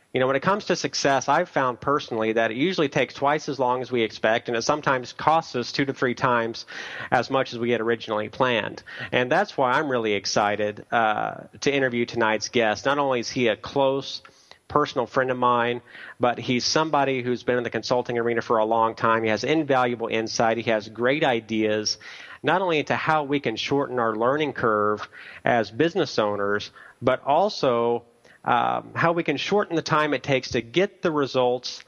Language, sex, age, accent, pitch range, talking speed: English, male, 40-59, American, 115-135 Hz, 200 wpm